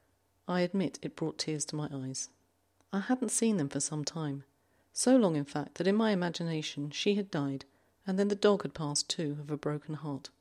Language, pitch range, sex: English, 135-195 Hz, female